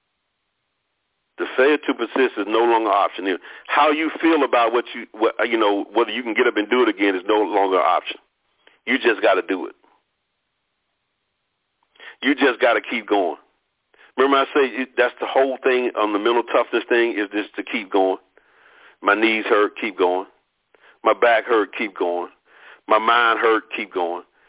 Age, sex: 50-69, male